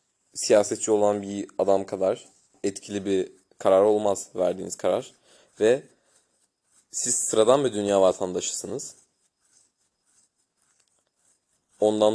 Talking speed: 90 wpm